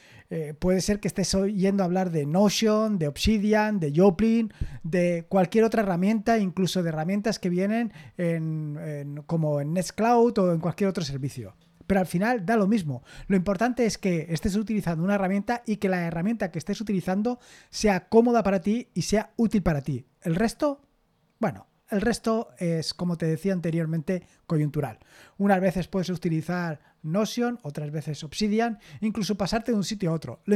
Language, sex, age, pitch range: Spanish, male, 20-39, 165-215 Hz